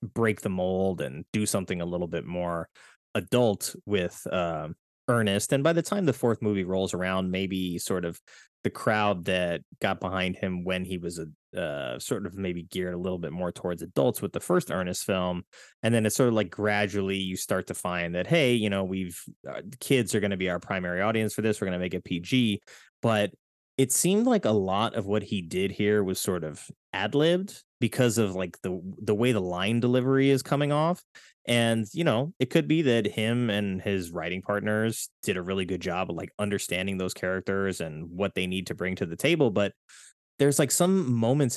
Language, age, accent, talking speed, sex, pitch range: English, 20-39, American, 215 wpm, male, 95-120 Hz